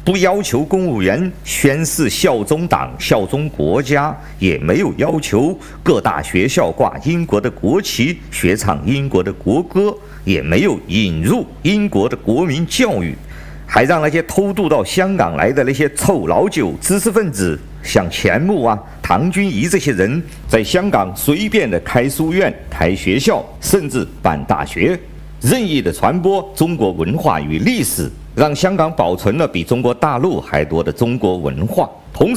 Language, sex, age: Chinese, male, 50-69